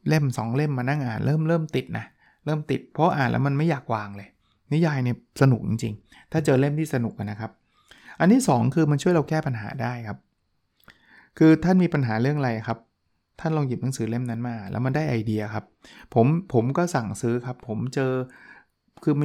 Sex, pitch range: male, 115-140 Hz